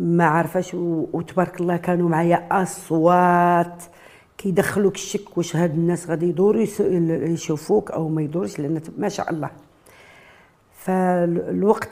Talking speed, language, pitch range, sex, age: 125 wpm, French, 165-200 Hz, female, 50-69